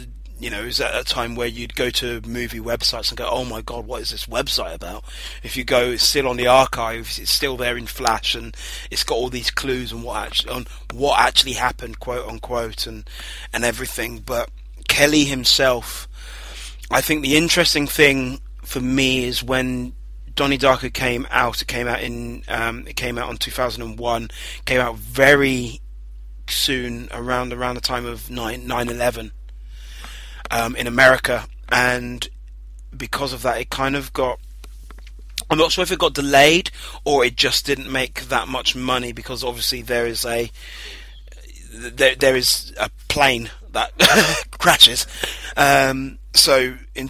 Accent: British